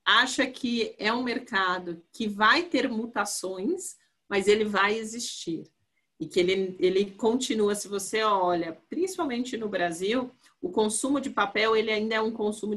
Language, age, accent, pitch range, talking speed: Portuguese, 40-59, Brazilian, 200-275 Hz, 155 wpm